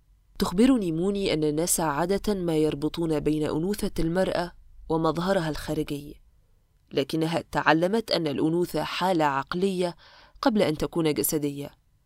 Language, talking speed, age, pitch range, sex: Arabic, 110 wpm, 20-39, 150-200 Hz, female